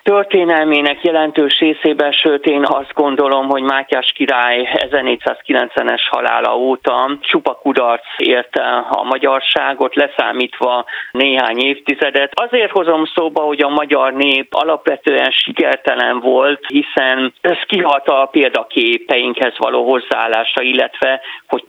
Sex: male